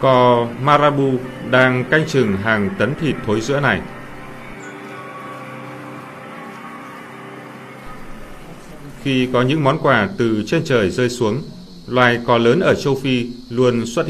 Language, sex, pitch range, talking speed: Vietnamese, male, 115-155 Hz, 125 wpm